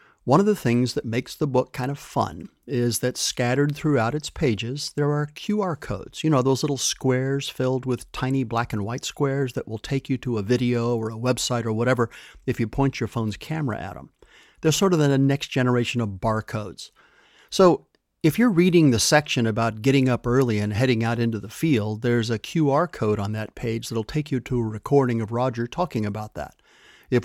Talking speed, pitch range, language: 210 wpm, 115-140 Hz, English